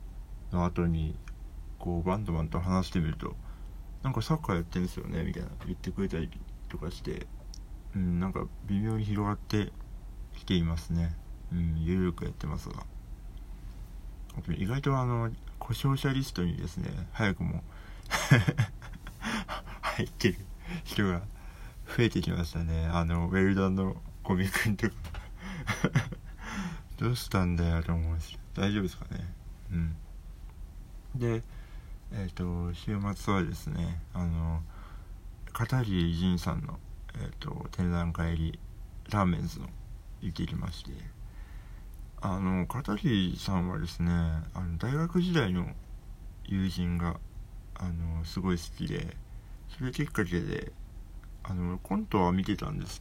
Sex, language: male, Japanese